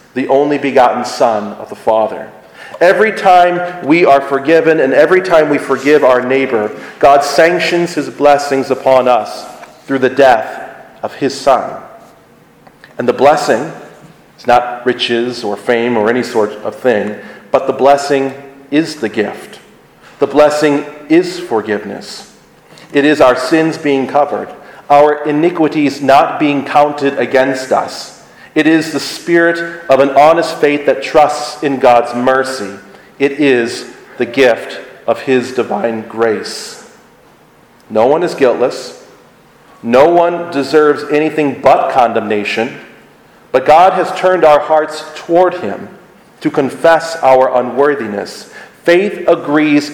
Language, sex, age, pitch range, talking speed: English, male, 40-59, 130-155 Hz, 135 wpm